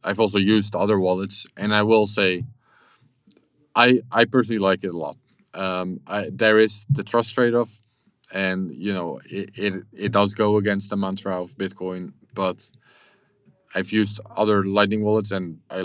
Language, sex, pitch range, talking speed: English, male, 90-110 Hz, 165 wpm